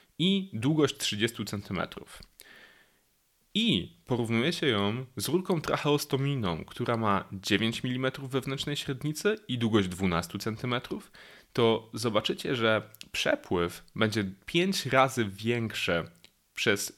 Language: Polish